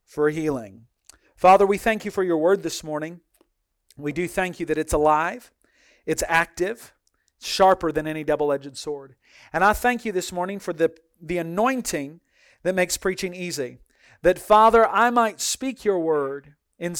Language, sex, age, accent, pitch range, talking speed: English, male, 40-59, American, 160-220 Hz, 170 wpm